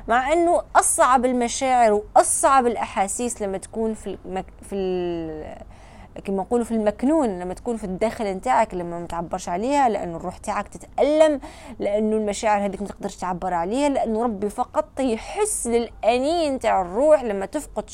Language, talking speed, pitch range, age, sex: Arabic, 135 wpm, 190-265 Hz, 20-39, female